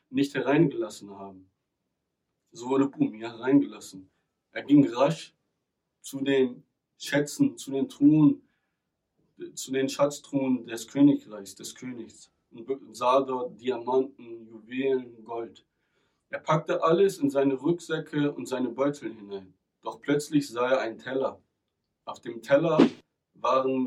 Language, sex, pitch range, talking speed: German, male, 125-150 Hz, 125 wpm